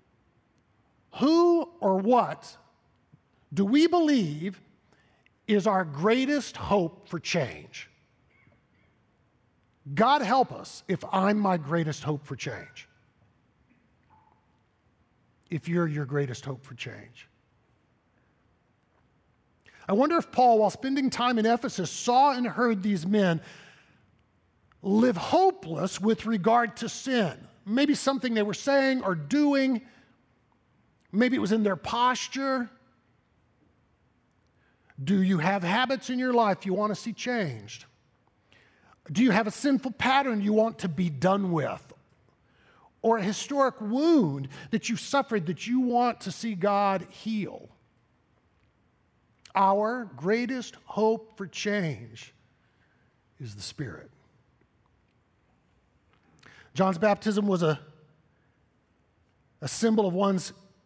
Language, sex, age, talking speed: English, male, 50-69, 115 wpm